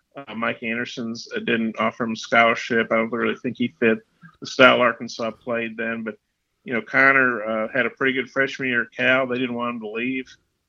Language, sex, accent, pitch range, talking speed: English, male, American, 115-130 Hz, 220 wpm